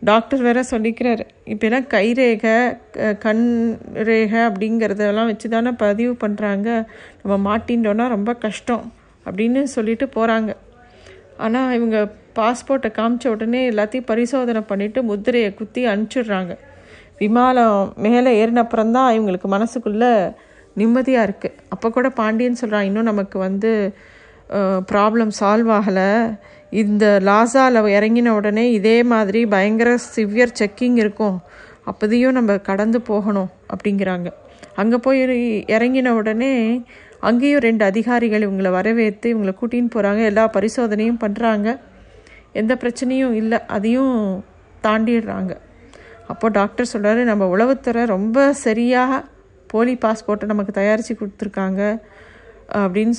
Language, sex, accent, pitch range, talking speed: Tamil, female, native, 210-240 Hz, 110 wpm